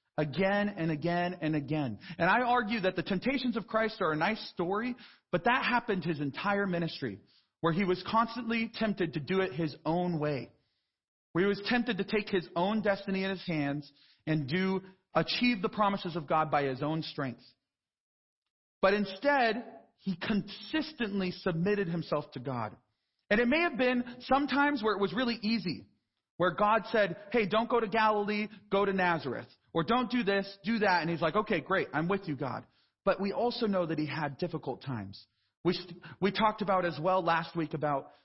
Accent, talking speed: American, 190 wpm